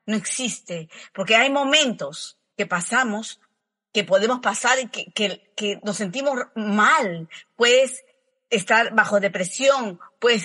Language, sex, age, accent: Spanish, female, 40-59, American